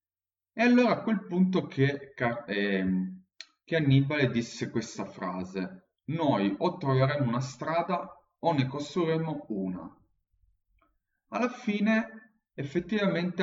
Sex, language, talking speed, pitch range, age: male, Italian, 105 wpm, 100-145 Hz, 30-49